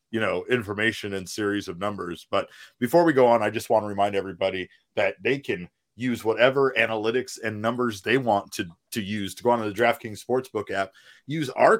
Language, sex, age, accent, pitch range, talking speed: English, male, 30-49, American, 100-120 Hz, 210 wpm